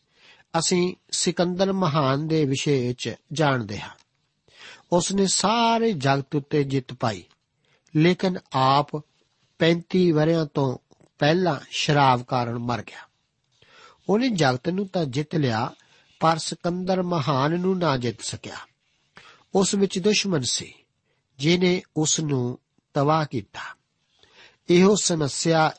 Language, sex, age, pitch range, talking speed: Punjabi, male, 50-69, 130-165 Hz, 115 wpm